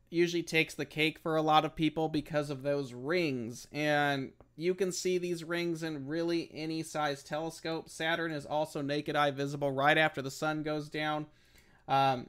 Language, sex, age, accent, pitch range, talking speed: English, male, 30-49, American, 130-160 Hz, 180 wpm